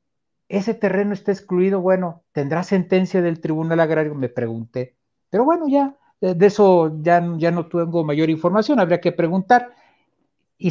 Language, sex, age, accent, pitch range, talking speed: Spanish, male, 50-69, Mexican, 145-195 Hz, 150 wpm